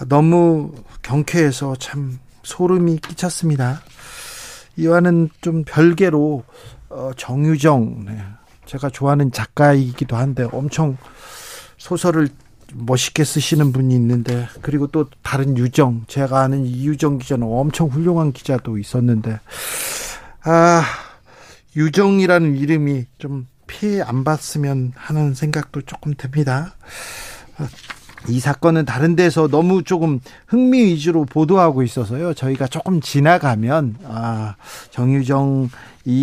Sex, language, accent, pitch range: male, Korean, native, 130-170 Hz